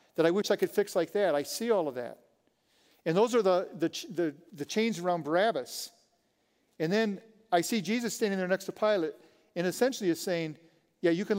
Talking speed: 210 wpm